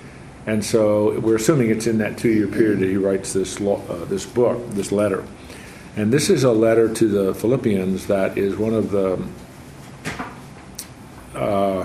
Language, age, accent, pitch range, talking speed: English, 50-69, American, 100-120 Hz, 160 wpm